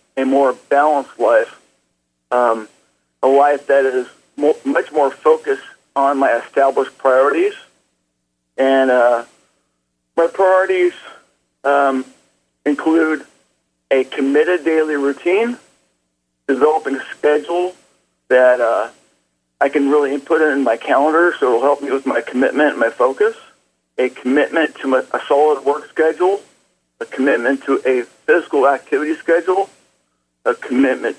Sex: male